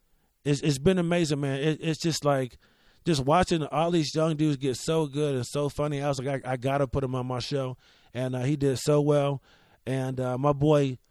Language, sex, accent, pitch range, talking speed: English, male, American, 130-150 Hz, 225 wpm